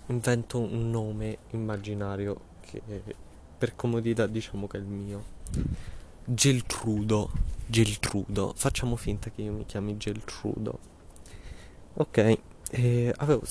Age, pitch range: 20-39, 100-120 Hz